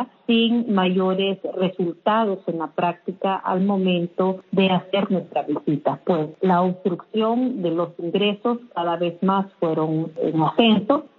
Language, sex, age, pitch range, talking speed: Spanish, female, 40-59, 175-205 Hz, 130 wpm